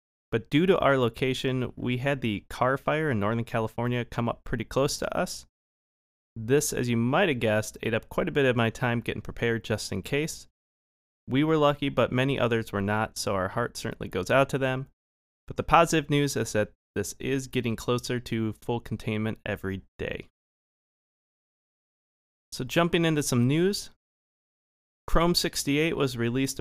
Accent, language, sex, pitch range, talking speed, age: American, English, male, 105-135 Hz, 175 wpm, 30-49